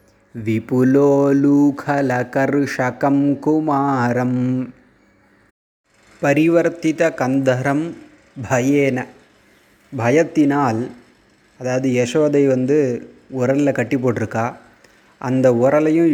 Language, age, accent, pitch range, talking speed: Tamil, 30-49, native, 125-150 Hz, 55 wpm